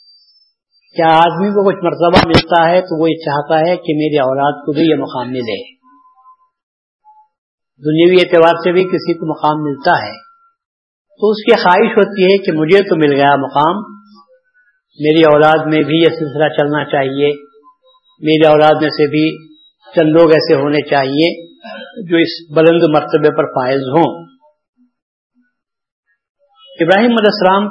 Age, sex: 50-69, male